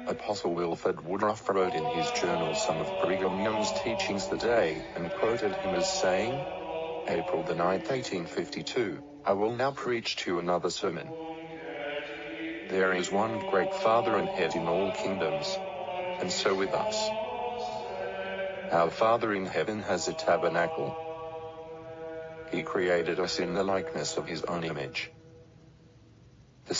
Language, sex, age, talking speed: English, male, 50-69, 140 wpm